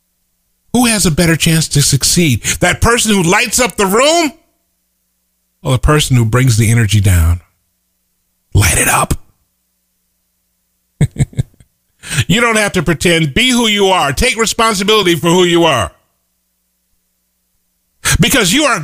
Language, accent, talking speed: English, American, 135 wpm